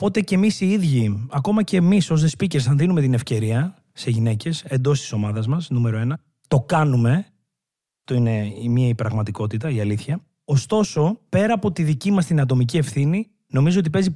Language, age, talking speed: Greek, 30-49, 185 wpm